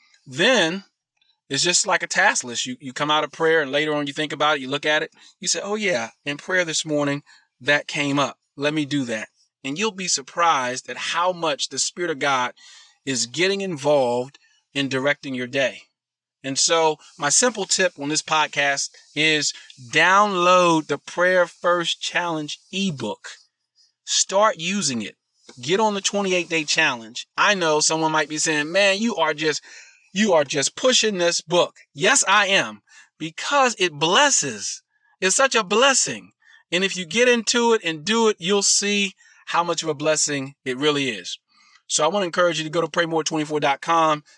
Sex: male